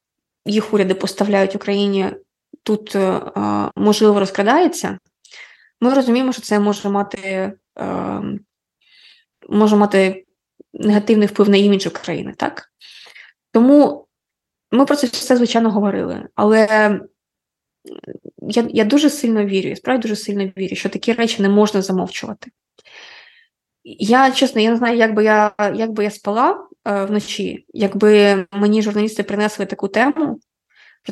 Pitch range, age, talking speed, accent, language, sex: 200-235 Hz, 20-39, 125 wpm, native, Ukrainian, female